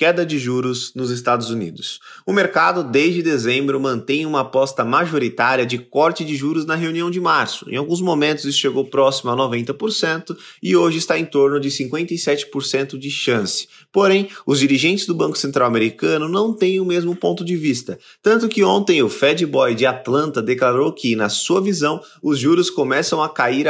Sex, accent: male, Brazilian